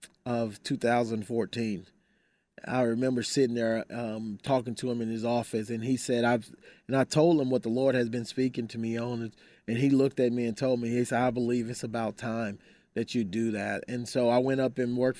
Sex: male